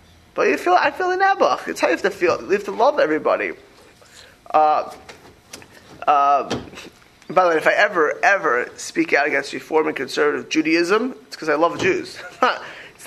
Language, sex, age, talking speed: English, male, 20-39, 190 wpm